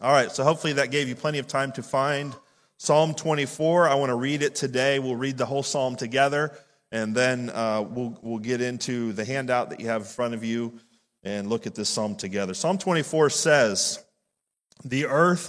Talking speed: 205 wpm